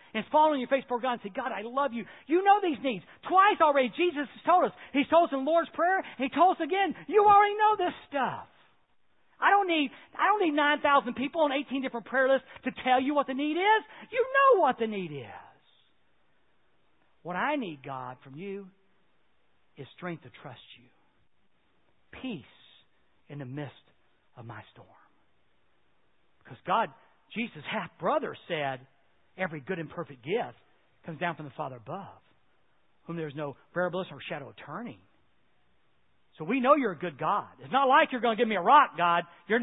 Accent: American